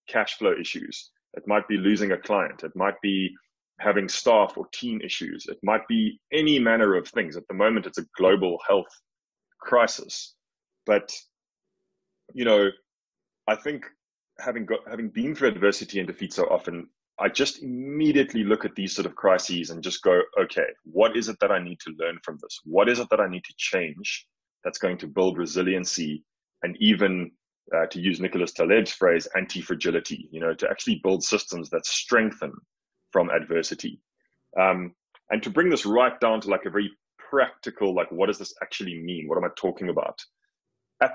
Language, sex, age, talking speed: English, male, 20-39, 180 wpm